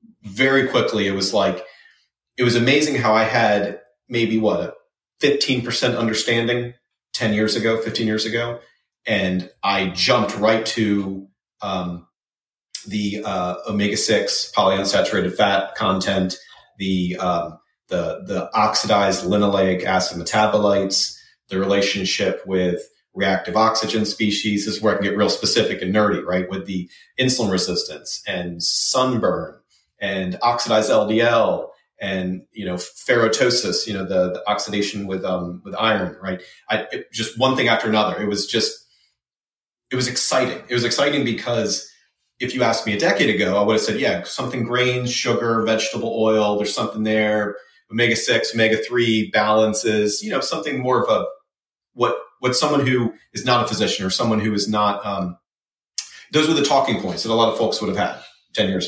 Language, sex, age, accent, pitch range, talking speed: English, male, 30-49, American, 95-120 Hz, 165 wpm